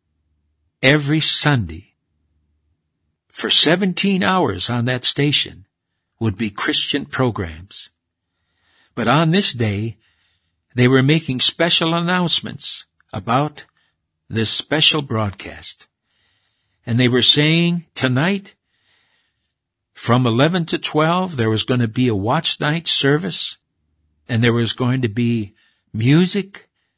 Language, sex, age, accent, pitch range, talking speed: English, male, 60-79, American, 105-150 Hz, 110 wpm